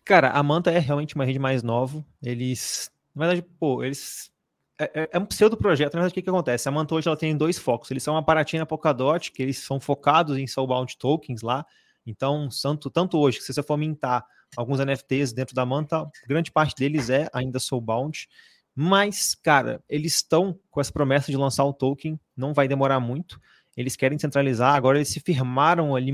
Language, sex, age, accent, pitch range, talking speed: Portuguese, male, 20-39, Brazilian, 130-155 Hz, 200 wpm